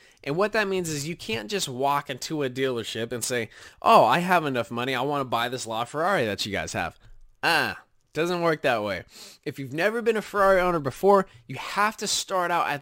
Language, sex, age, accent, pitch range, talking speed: English, male, 20-39, American, 135-190 Hz, 220 wpm